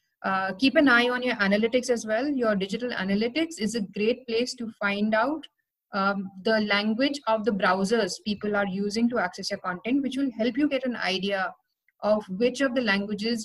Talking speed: 195 wpm